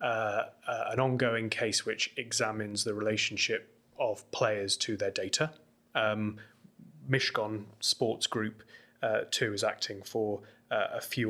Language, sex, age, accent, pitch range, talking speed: English, male, 20-39, British, 105-120 Hz, 135 wpm